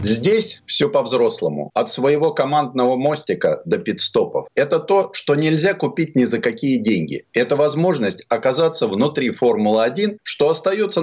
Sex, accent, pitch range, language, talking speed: male, native, 125-195 Hz, Russian, 135 wpm